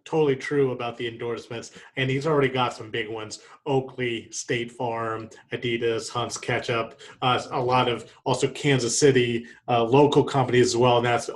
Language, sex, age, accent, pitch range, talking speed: English, male, 30-49, American, 125-150 Hz, 170 wpm